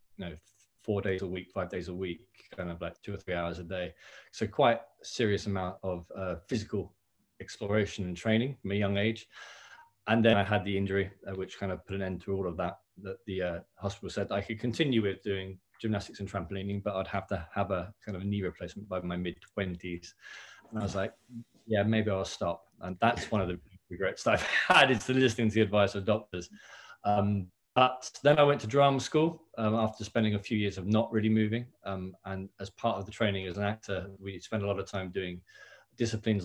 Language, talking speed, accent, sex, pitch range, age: English, 225 wpm, British, male, 95-110 Hz, 20-39